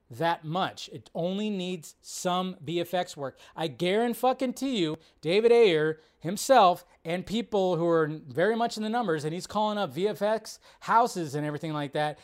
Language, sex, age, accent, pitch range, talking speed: English, male, 30-49, American, 170-230 Hz, 160 wpm